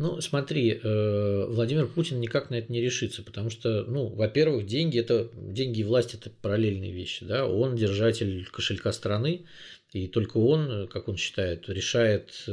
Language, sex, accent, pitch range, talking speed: Russian, male, native, 100-120 Hz, 160 wpm